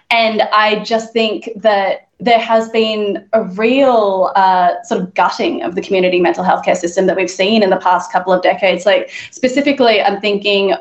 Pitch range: 195-230 Hz